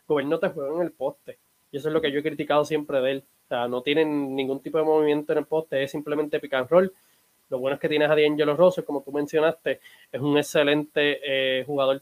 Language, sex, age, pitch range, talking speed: Spanish, male, 20-39, 140-165 Hz, 250 wpm